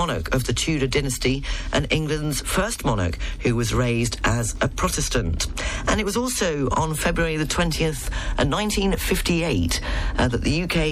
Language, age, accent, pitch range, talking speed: English, 40-59, British, 125-180 Hz, 160 wpm